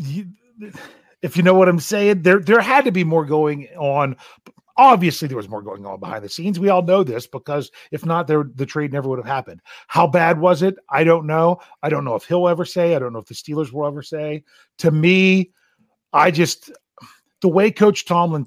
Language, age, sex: English, 40-59, male